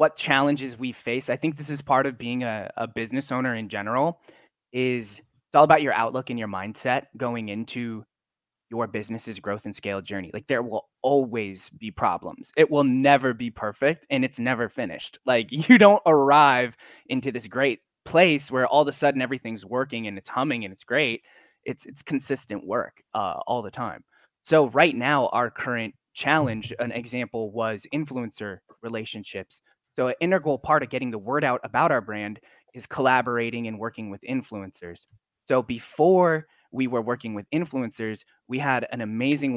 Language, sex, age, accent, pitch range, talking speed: English, male, 20-39, American, 115-145 Hz, 180 wpm